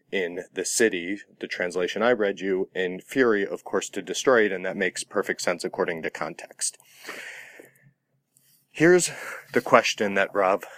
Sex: male